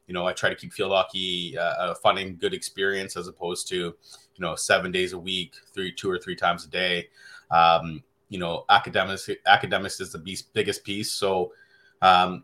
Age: 30-49